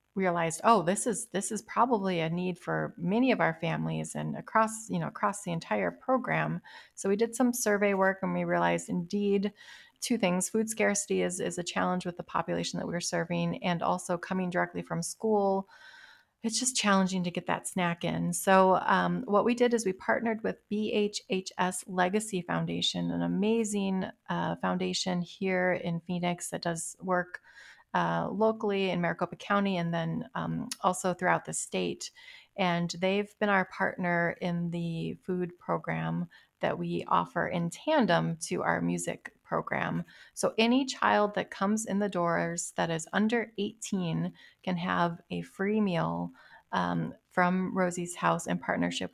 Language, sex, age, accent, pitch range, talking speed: English, female, 30-49, American, 170-205 Hz, 165 wpm